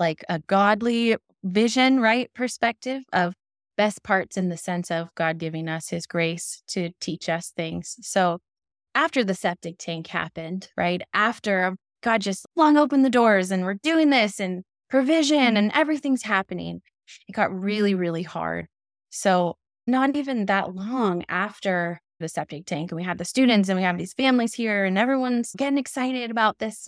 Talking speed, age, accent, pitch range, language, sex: 170 wpm, 20-39, American, 175-215 Hz, English, female